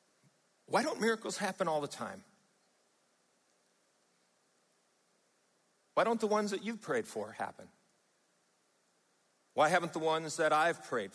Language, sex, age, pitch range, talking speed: English, male, 50-69, 160-210 Hz, 125 wpm